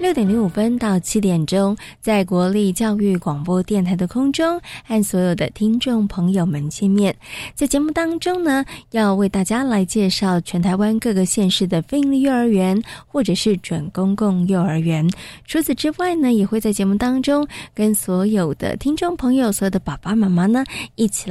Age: 20-39